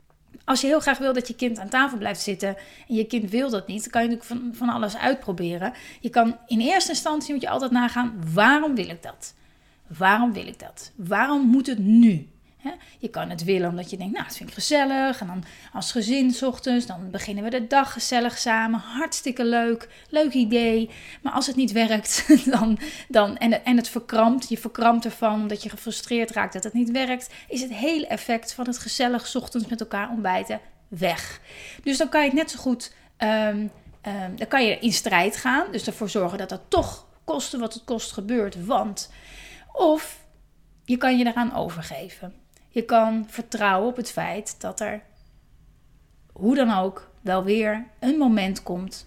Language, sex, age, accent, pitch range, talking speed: Dutch, female, 30-49, Dutch, 210-255 Hz, 190 wpm